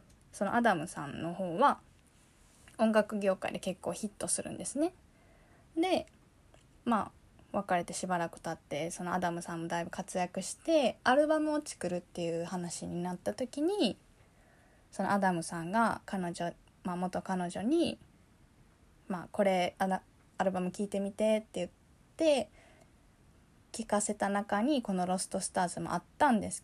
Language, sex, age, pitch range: Japanese, female, 20-39, 175-215 Hz